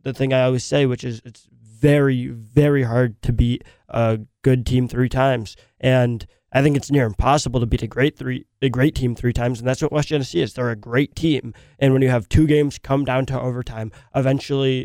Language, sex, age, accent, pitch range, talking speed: English, male, 20-39, American, 120-130 Hz, 220 wpm